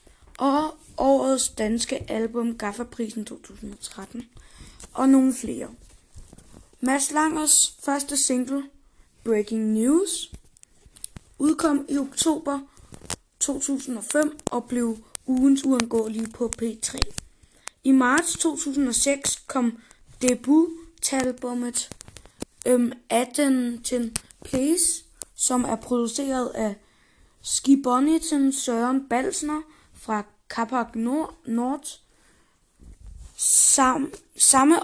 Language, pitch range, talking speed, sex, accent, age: Danish, 235-280 Hz, 75 wpm, female, native, 20-39